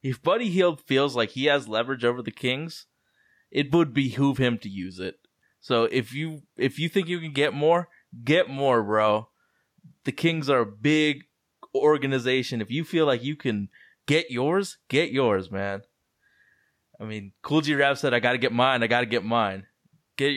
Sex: male